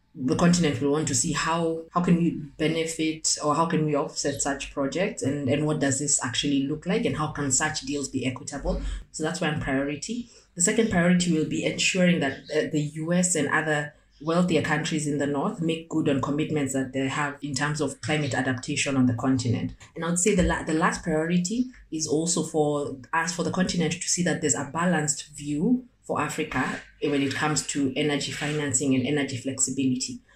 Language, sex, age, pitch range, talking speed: English, female, 30-49, 140-165 Hz, 200 wpm